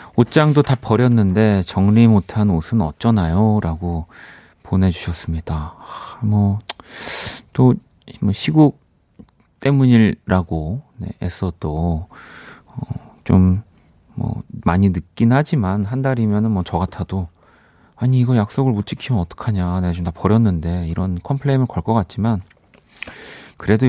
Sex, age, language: male, 40-59, Korean